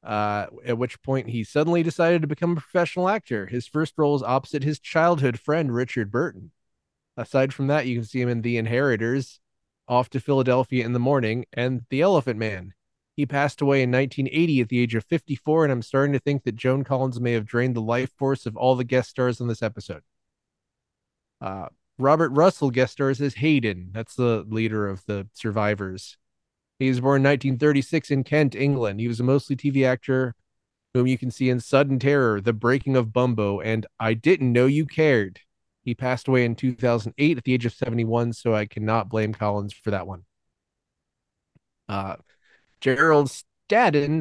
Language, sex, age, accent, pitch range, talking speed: English, male, 30-49, American, 115-145 Hz, 190 wpm